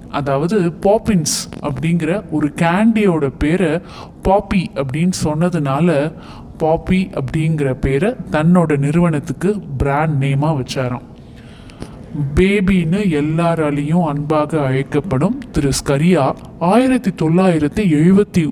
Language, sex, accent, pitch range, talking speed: Tamil, male, native, 145-185 Hz, 85 wpm